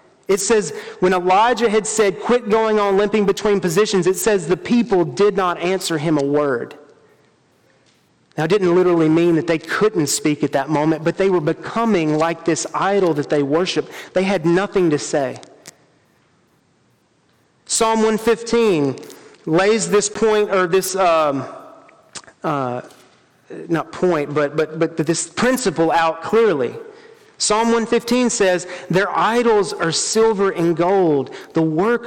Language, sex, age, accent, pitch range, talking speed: English, male, 40-59, American, 170-215 Hz, 150 wpm